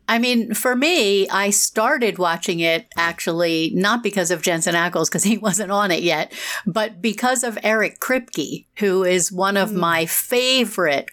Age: 50-69